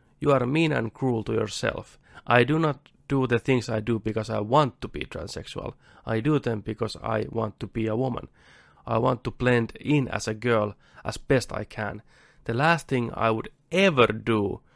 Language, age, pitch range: Finnish, 30-49, 110-135 Hz